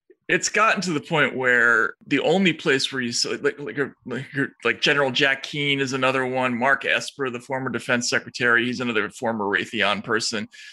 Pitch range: 120-145 Hz